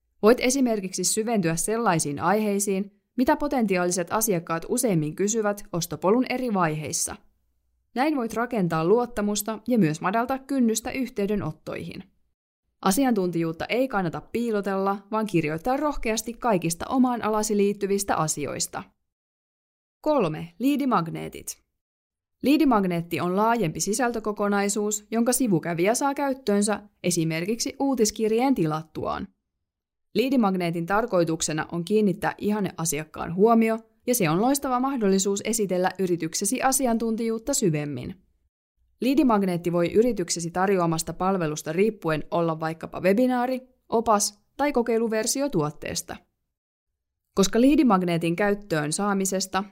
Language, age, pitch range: Finnish, 20-39, 170-230 Hz